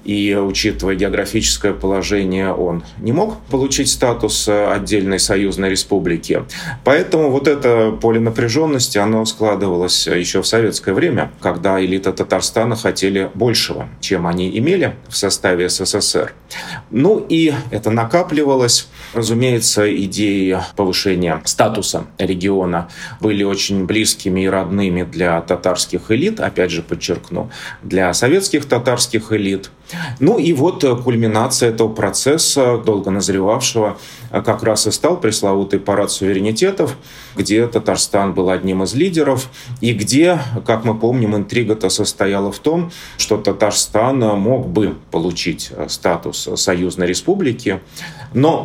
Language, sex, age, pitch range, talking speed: Russian, male, 30-49, 95-115 Hz, 120 wpm